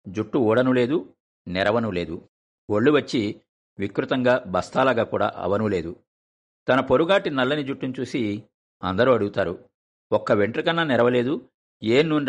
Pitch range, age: 90-130 Hz, 50-69